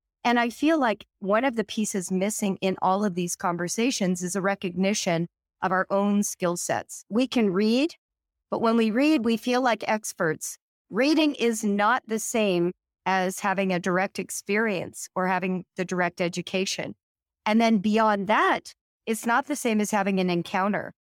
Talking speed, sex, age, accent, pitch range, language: 170 wpm, female, 40-59, American, 185-235 Hz, English